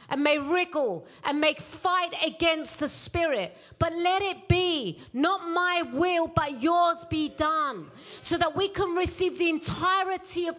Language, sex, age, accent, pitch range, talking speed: English, female, 40-59, British, 290-345 Hz, 160 wpm